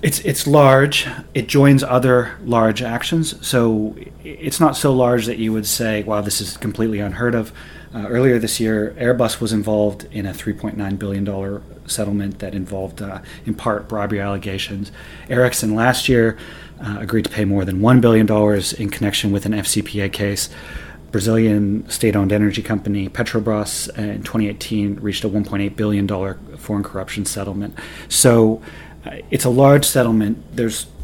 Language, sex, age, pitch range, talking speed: English, male, 30-49, 100-115 Hz, 155 wpm